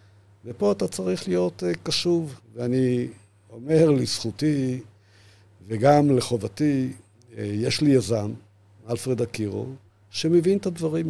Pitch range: 100-130 Hz